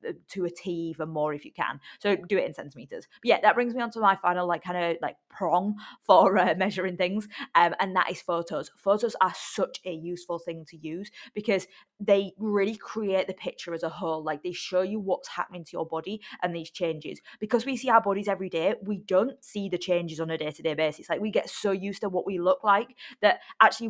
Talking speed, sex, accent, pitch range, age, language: 230 wpm, female, British, 170-200 Hz, 20-39, English